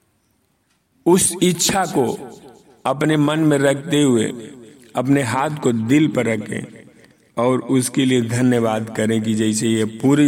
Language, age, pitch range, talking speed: Hindi, 50-69, 130-170 Hz, 135 wpm